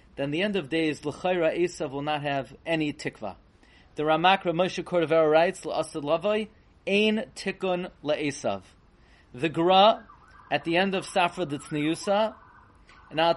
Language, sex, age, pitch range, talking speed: English, male, 30-49, 145-190 Hz, 150 wpm